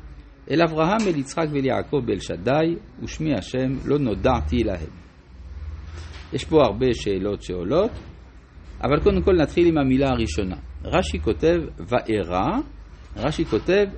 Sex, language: male, Hebrew